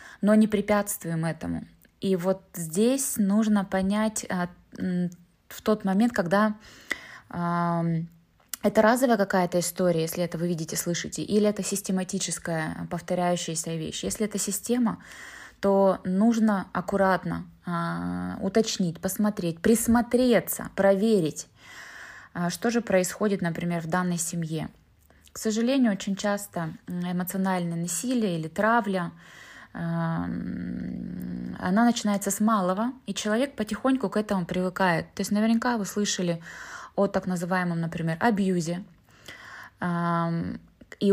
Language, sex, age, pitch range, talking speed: Russian, female, 20-39, 175-215 Hz, 110 wpm